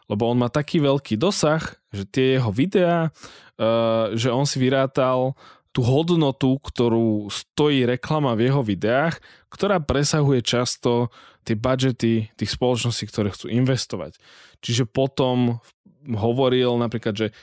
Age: 20-39